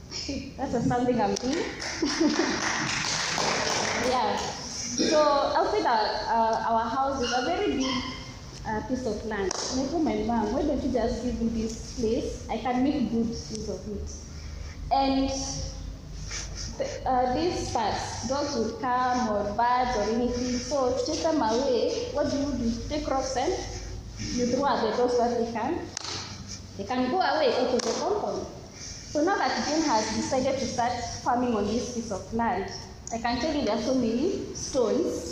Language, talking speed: English, 175 wpm